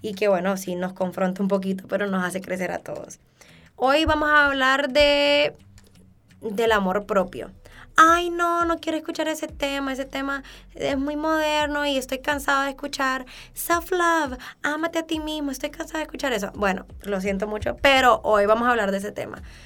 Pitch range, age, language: 195-275 Hz, 20-39, Spanish